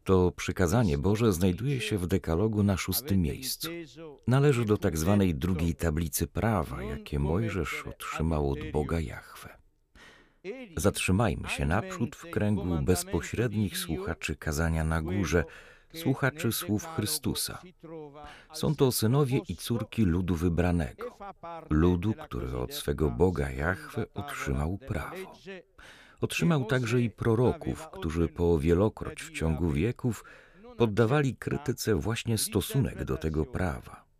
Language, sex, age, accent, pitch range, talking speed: Polish, male, 40-59, native, 85-120 Hz, 120 wpm